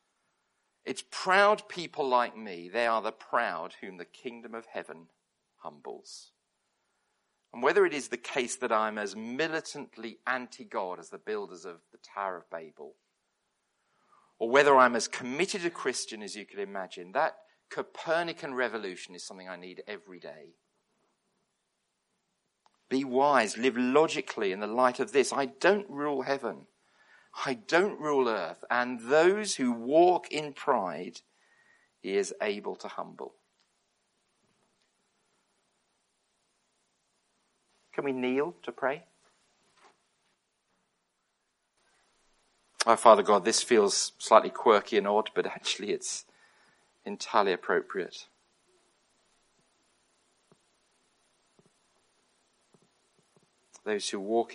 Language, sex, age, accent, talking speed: English, male, 40-59, British, 115 wpm